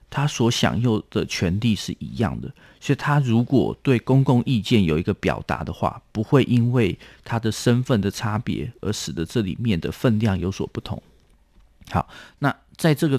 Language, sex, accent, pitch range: Chinese, male, native, 100-125 Hz